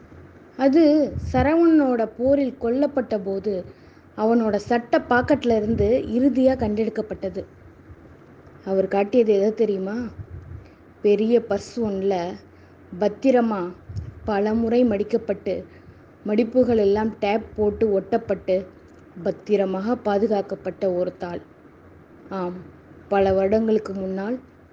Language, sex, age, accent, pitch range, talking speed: Tamil, female, 20-39, native, 195-235 Hz, 80 wpm